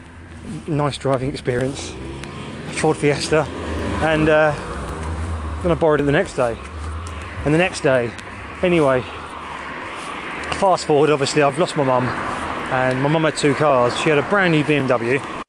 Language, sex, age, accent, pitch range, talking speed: English, male, 20-39, British, 125-155 Hz, 145 wpm